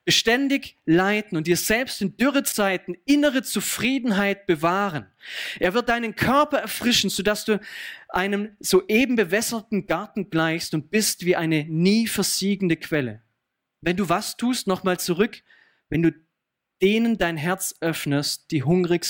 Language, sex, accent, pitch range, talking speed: German, male, German, 155-195 Hz, 135 wpm